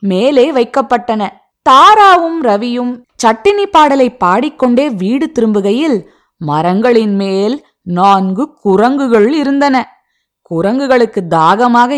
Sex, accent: female, native